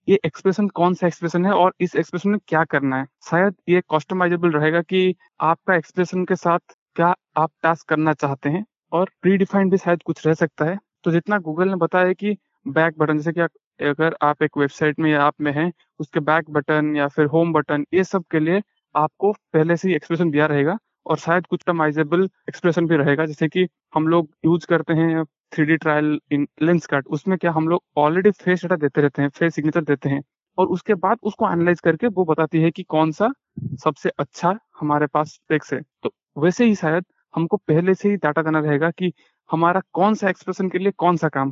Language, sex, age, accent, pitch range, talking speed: Hindi, male, 20-39, native, 150-180 Hz, 190 wpm